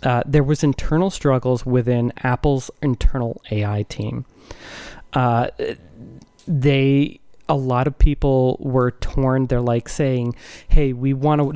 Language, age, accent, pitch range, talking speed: English, 20-39, American, 125-150 Hz, 130 wpm